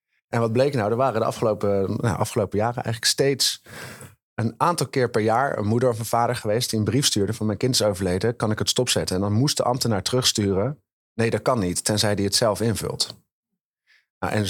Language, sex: Dutch, male